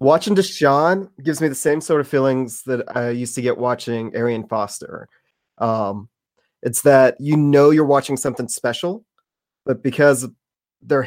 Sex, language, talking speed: male, English, 165 wpm